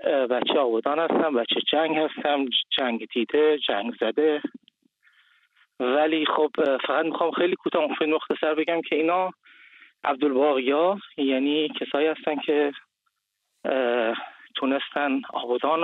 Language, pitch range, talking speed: English, 140-195 Hz, 110 wpm